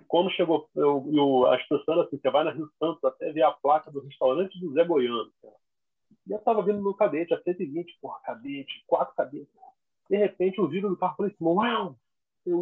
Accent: Brazilian